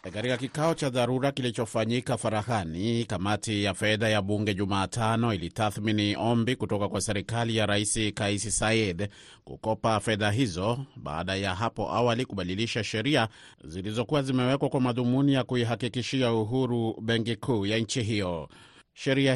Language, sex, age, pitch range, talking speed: Swahili, male, 30-49, 100-120 Hz, 135 wpm